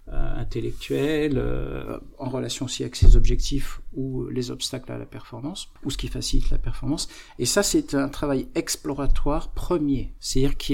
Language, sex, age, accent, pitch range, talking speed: French, male, 50-69, French, 125-155 Hz, 160 wpm